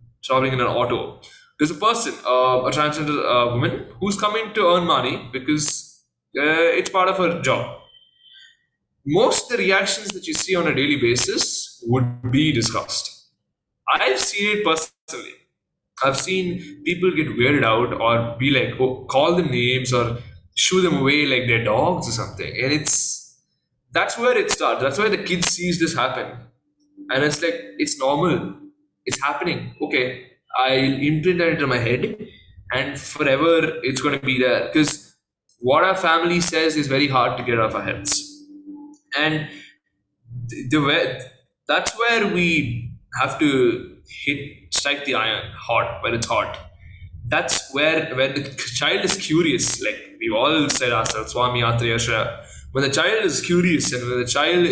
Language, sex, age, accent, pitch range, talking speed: English, male, 20-39, Indian, 125-175 Hz, 165 wpm